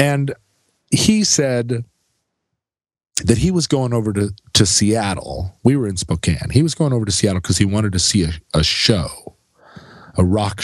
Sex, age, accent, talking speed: male, 40-59, American, 175 wpm